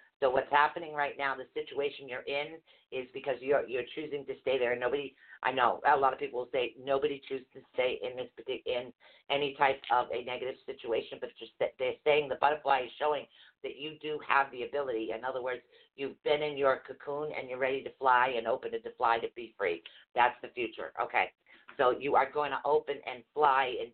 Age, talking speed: 50-69, 220 wpm